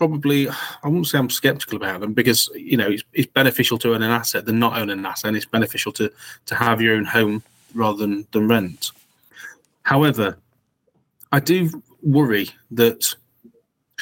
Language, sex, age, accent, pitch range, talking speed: English, male, 30-49, British, 115-140 Hz, 175 wpm